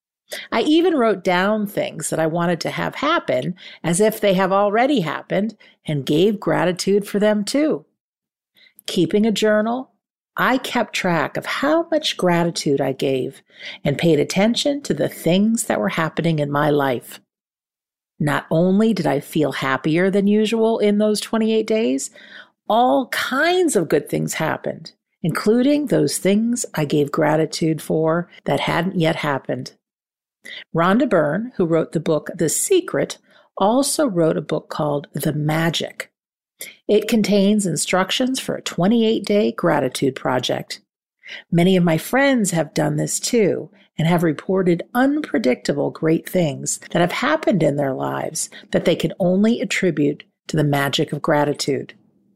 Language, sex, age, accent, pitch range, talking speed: English, female, 50-69, American, 155-220 Hz, 150 wpm